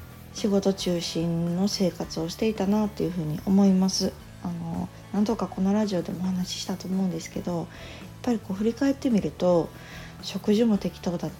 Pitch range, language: 165-205 Hz, Japanese